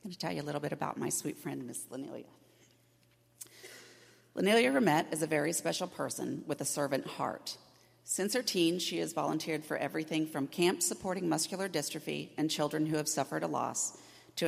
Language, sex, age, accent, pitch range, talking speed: English, female, 40-59, American, 140-170 Hz, 190 wpm